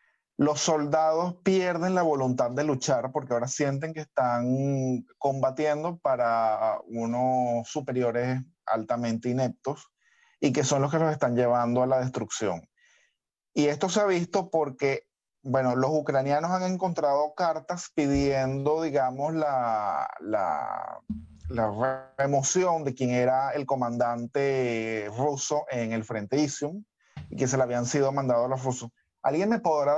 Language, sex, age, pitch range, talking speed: Spanish, male, 30-49, 130-175 Hz, 140 wpm